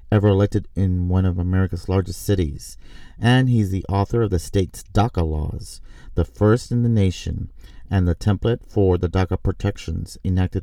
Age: 40-59